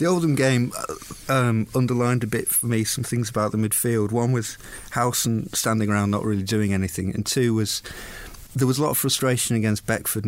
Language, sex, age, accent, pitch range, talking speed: English, male, 30-49, British, 95-115 Hz, 200 wpm